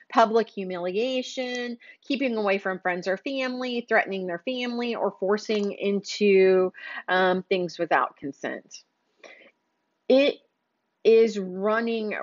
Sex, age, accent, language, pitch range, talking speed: female, 30-49, American, English, 190-235 Hz, 105 wpm